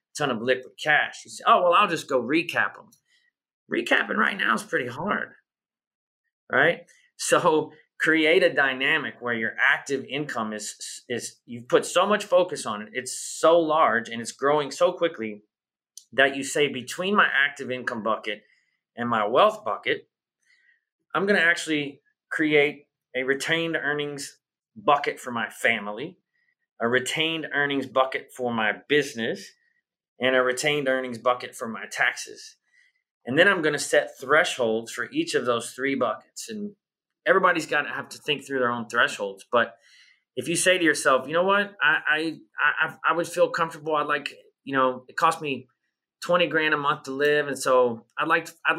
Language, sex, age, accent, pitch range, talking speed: English, male, 30-49, American, 130-180 Hz, 175 wpm